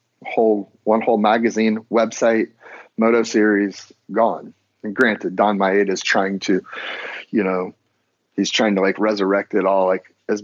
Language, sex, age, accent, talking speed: English, male, 30-49, American, 150 wpm